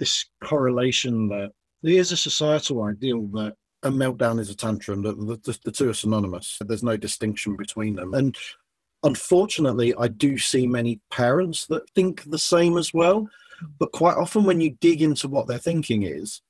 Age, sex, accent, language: 40-59, male, British, English